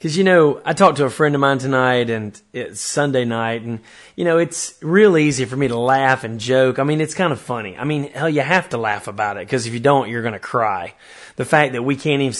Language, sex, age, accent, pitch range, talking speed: English, male, 30-49, American, 115-145 Hz, 270 wpm